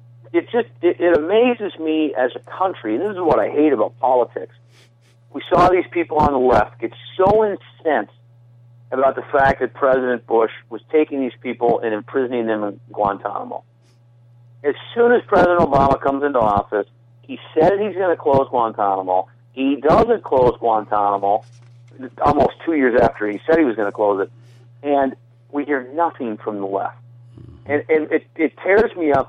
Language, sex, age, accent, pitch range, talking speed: English, male, 50-69, American, 120-145 Hz, 175 wpm